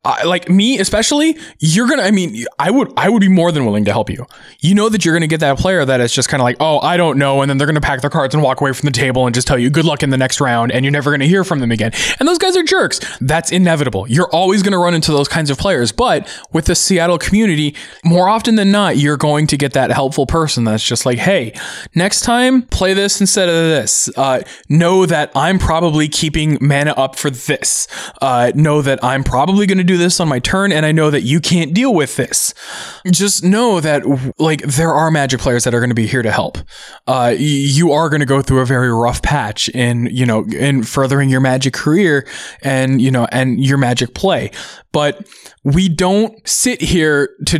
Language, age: English, 20-39